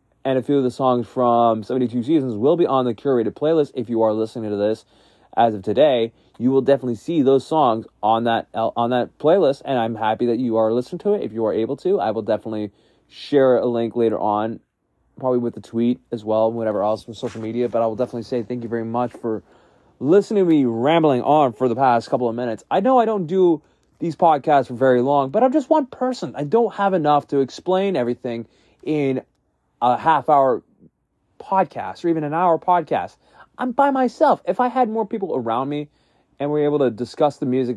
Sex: male